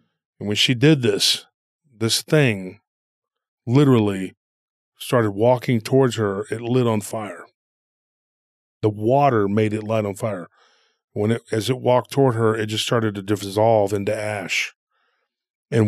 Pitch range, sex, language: 105-125 Hz, male, English